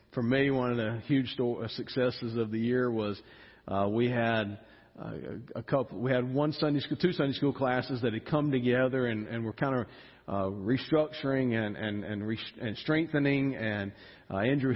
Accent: American